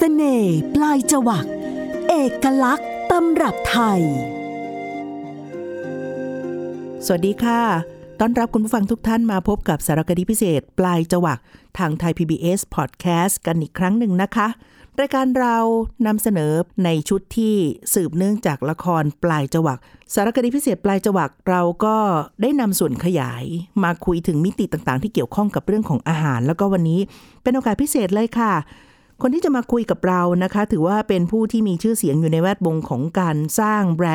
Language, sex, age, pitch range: Thai, female, 50-69, 155-215 Hz